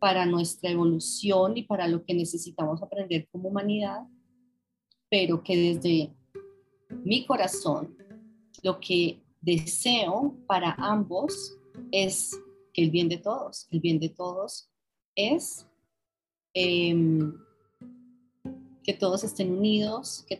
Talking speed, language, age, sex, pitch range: 110 wpm, Spanish, 30-49, female, 185-245 Hz